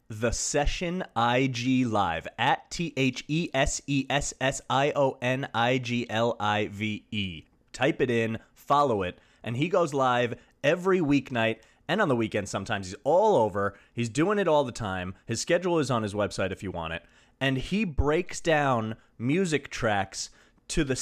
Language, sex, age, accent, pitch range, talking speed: English, male, 30-49, American, 115-145 Hz, 140 wpm